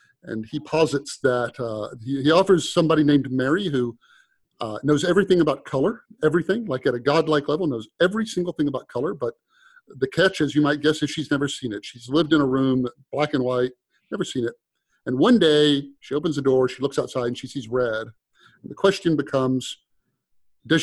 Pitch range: 130-180 Hz